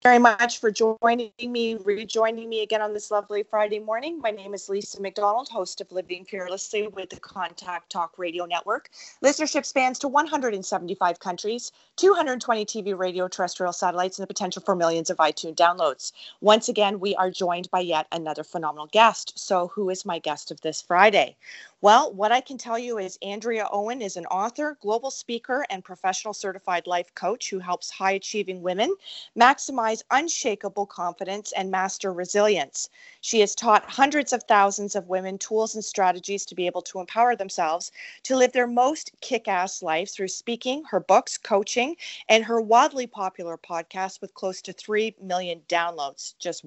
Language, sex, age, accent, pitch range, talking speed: English, female, 30-49, American, 185-235 Hz, 170 wpm